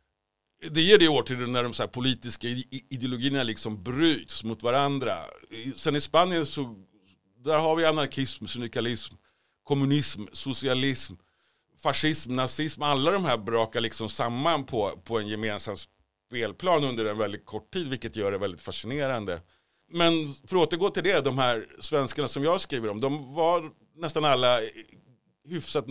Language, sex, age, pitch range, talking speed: Swedish, male, 60-79, 110-150 Hz, 155 wpm